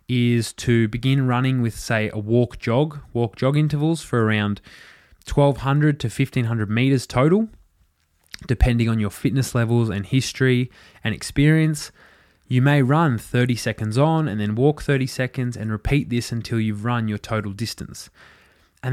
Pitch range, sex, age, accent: 110-135 Hz, male, 20-39, Australian